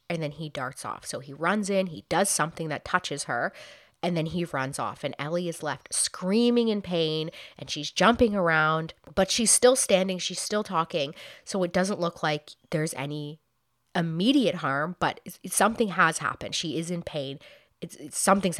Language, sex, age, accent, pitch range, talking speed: English, female, 30-49, American, 155-215 Hz, 180 wpm